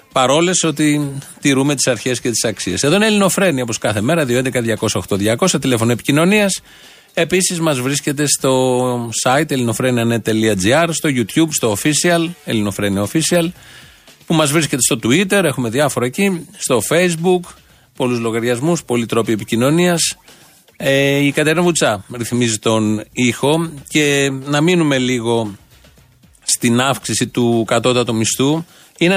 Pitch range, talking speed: 125-170 Hz, 130 wpm